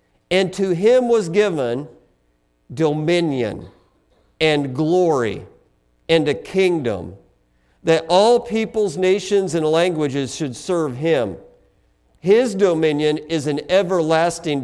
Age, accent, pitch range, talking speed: 50-69, American, 145-195 Hz, 105 wpm